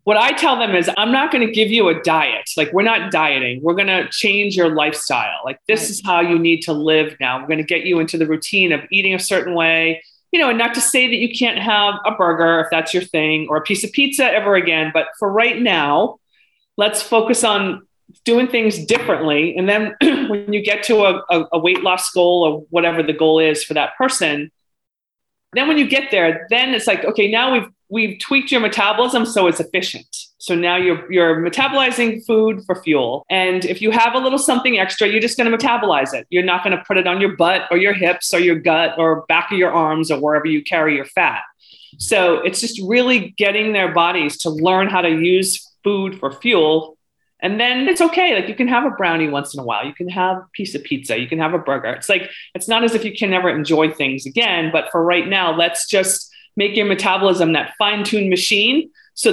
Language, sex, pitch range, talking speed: English, female, 165-225 Hz, 230 wpm